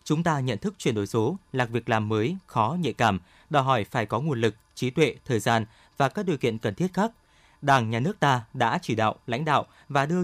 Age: 20-39